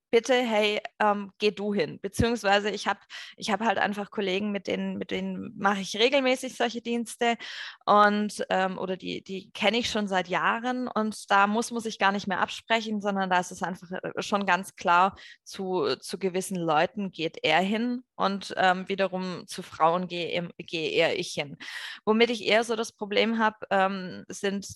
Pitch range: 185-220 Hz